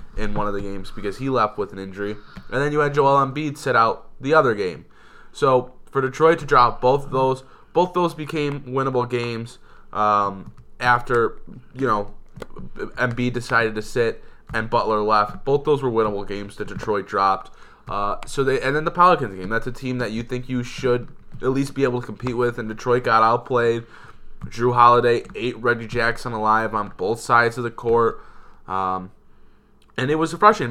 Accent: American